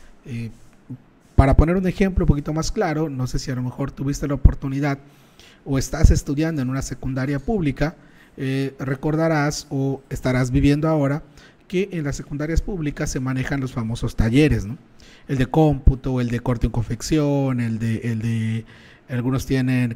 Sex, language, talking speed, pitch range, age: male, Spanish, 170 wpm, 125-160 Hz, 40-59